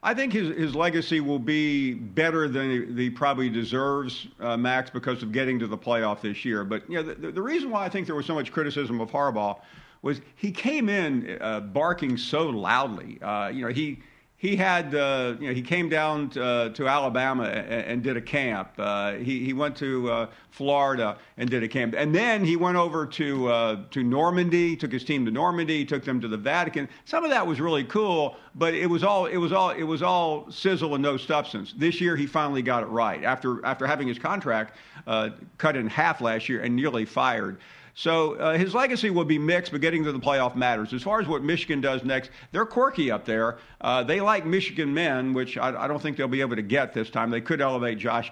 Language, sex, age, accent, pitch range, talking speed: English, male, 50-69, American, 120-165 Hz, 230 wpm